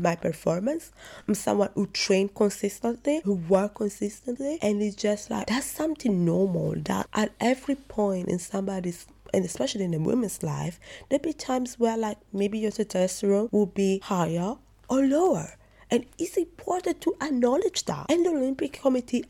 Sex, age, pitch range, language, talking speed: female, 20-39, 190-235 Hz, English, 160 wpm